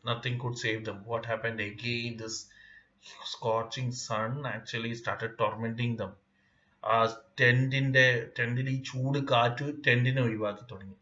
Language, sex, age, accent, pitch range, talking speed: Malayalam, male, 30-49, native, 110-125 Hz, 125 wpm